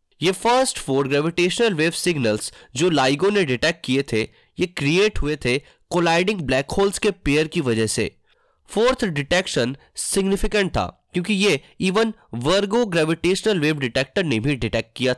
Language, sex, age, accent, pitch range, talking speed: Hindi, male, 20-39, native, 130-195 Hz, 155 wpm